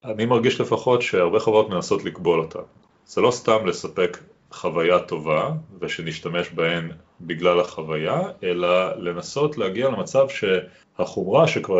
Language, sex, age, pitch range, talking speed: Hebrew, male, 30-49, 85-140 Hz, 120 wpm